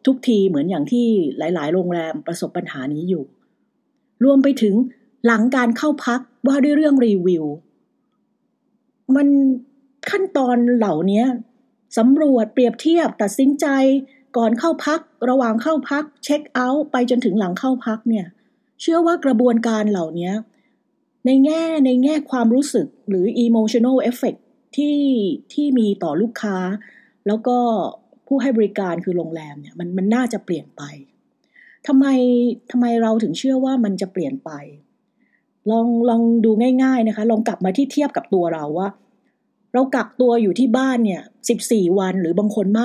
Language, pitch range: English, 205-265 Hz